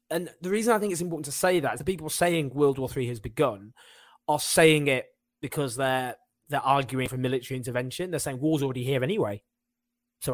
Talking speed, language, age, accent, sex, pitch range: 210 wpm, English, 20-39, British, male, 125-170 Hz